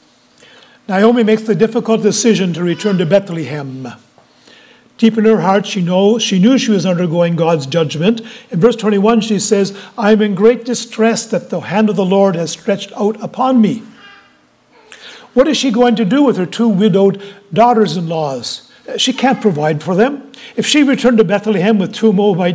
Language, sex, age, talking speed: English, male, 60-79, 175 wpm